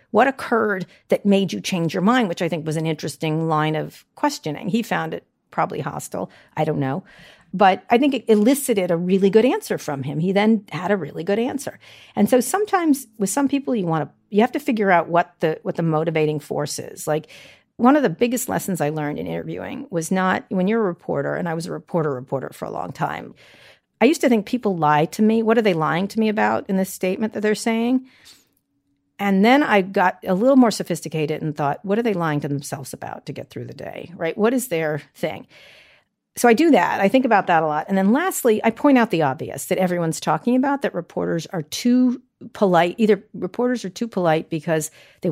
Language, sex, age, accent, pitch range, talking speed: English, female, 50-69, American, 160-230 Hz, 230 wpm